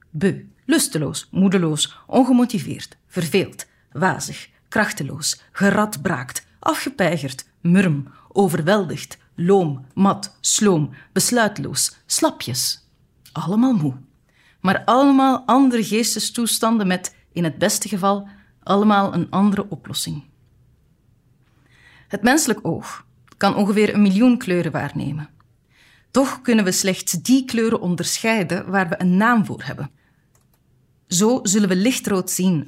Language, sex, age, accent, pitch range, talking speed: Dutch, female, 30-49, Dutch, 160-215 Hz, 105 wpm